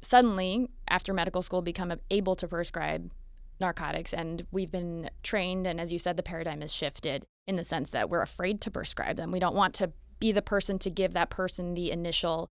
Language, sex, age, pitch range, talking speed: English, female, 20-39, 165-190 Hz, 205 wpm